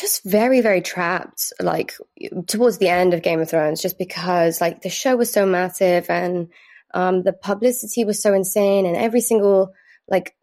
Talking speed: 180 wpm